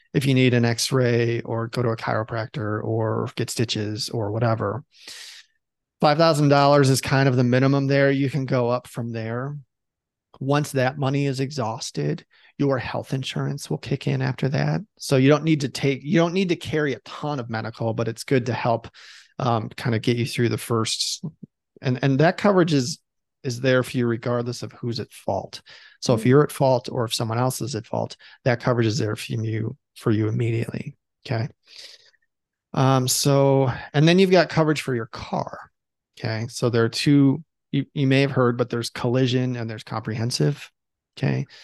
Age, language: 30-49, English